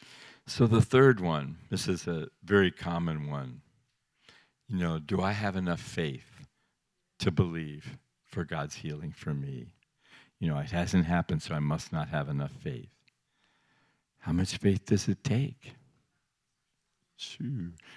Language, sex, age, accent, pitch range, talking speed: English, male, 60-79, American, 85-125 Hz, 145 wpm